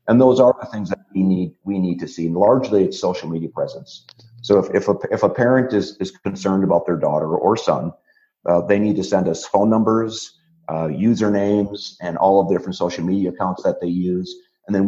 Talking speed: 225 wpm